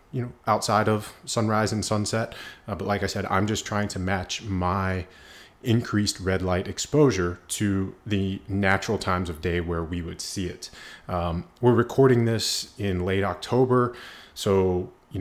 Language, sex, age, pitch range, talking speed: English, male, 30-49, 90-105 Hz, 165 wpm